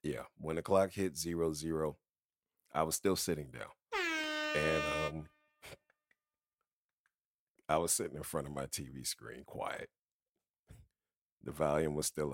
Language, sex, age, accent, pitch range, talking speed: English, male, 40-59, American, 75-90 Hz, 135 wpm